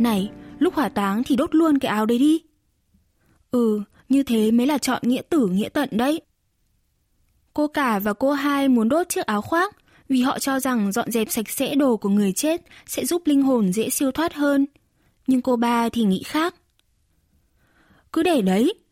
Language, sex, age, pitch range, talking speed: Vietnamese, female, 20-39, 225-285 Hz, 195 wpm